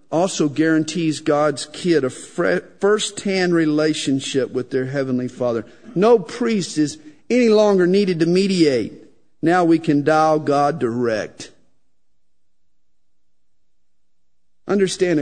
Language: English